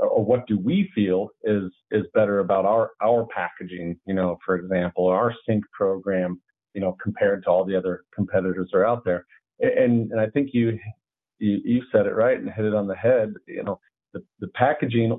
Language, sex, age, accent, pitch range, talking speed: English, male, 40-59, American, 95-115 Hz, 210 wpm